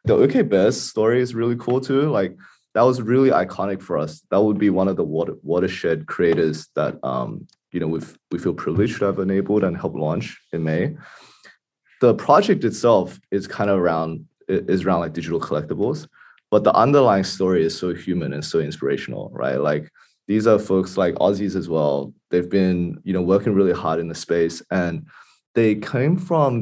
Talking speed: 190 wpm